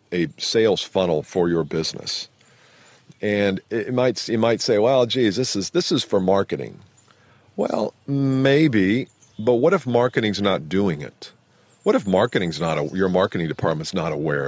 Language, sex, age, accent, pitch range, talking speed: English, male, 50-69, American, 85-115 Hz, 160 wpm